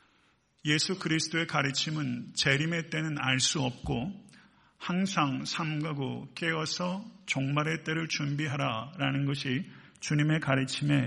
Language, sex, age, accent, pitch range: Korean, male, 50-69, native, 135-165 Hz